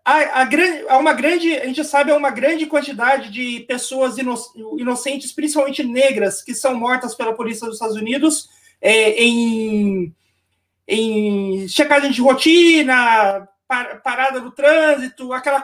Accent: Brazilian